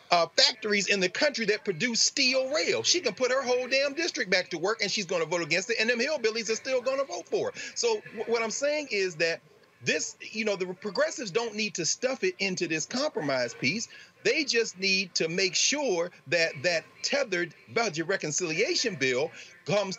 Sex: male